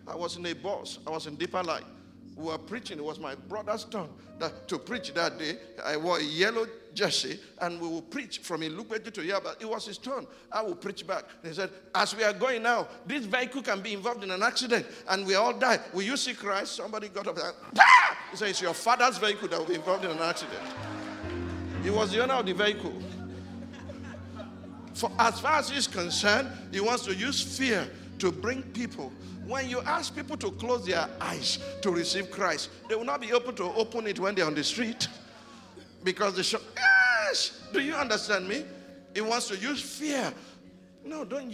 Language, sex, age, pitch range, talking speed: English, male, 50-69, 160-235 Hz, 210 wpm